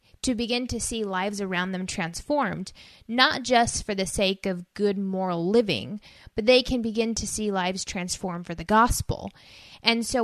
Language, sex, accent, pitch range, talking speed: English, female, American, 195-240 Hz, 175 wpm